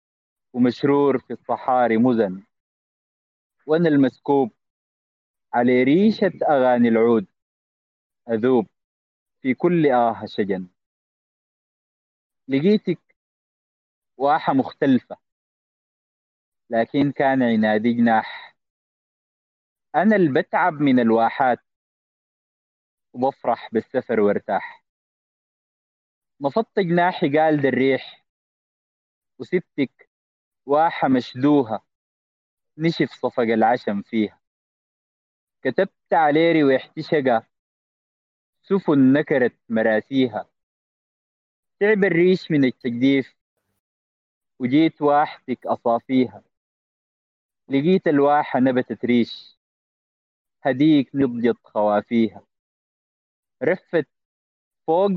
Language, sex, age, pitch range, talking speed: Arabic, male, 30-49, 110-150 Hz, 70 wpm